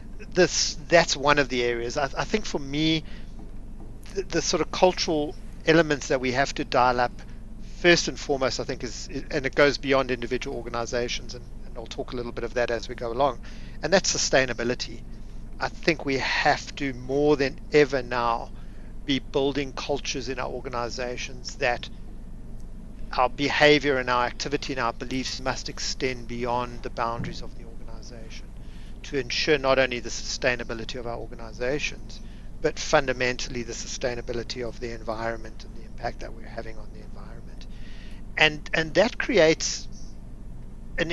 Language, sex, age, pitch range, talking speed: English, male, 50-69, 115-145 Hz, 165 wpm